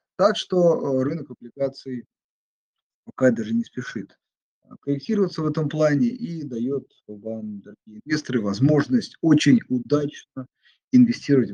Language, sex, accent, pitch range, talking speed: Russian, male, native, 115-155 Hz, 110 wpm